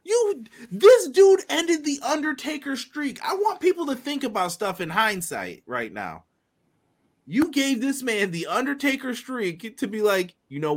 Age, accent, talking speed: 30-49, American, 165 wpm